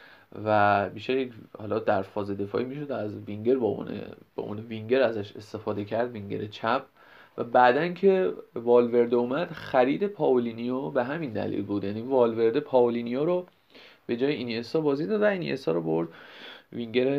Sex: male